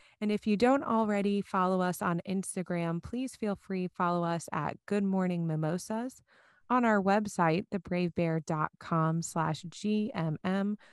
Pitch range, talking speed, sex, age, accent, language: 165-210 Hz, 135 wpm, female, 30-49, American, English